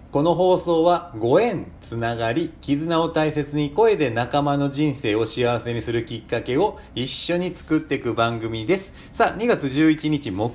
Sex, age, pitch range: male, 40-59, 105-155 Hz